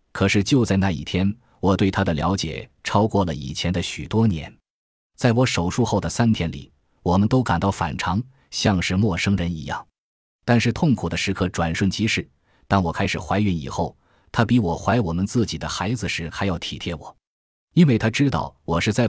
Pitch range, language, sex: 85-115 Hz, Chinese, male